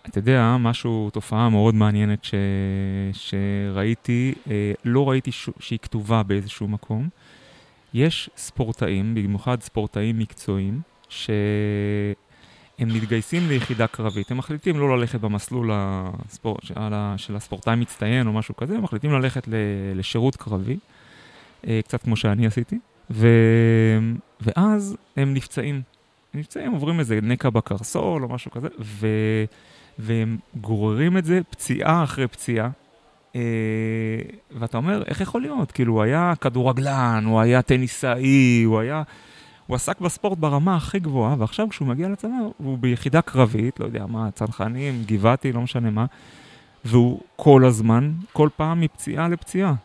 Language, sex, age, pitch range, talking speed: Hebrew, male, 30-49, 110-140 Hz, 135 wpm